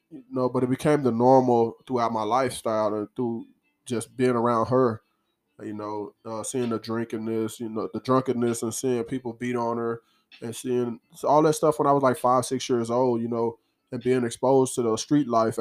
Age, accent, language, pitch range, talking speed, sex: 20-39, American, English, 115-135 Hz, 210 wpm, male